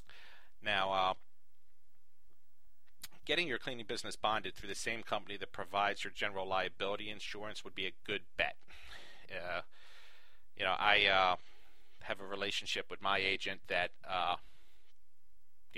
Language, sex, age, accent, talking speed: English, male, 40-59, American, 135 wpm